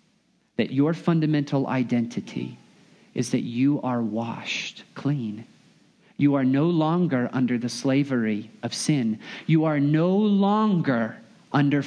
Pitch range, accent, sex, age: 135-200 Hz, American, male, 40-59